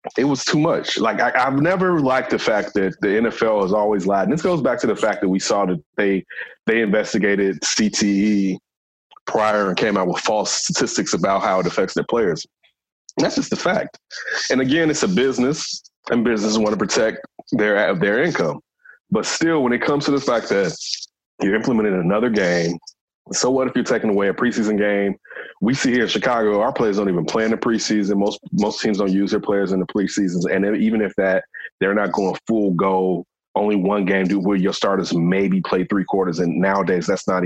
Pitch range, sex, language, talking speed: 100-145 Hz, male, English, 210 wpm